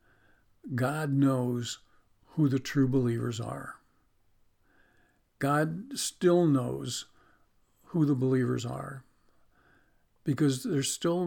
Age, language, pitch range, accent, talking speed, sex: 50-69, English, 130-150 Hz, American, 90 wpm, male